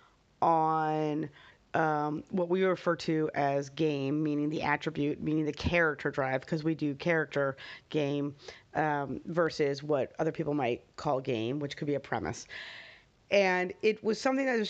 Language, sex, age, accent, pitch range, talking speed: English, female, 30-49, American, 155-190 Hz, 160 wpm